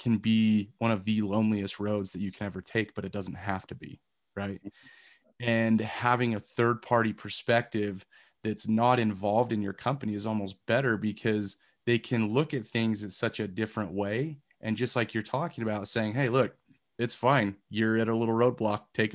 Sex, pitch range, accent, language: male, 105-115 Hz, American, English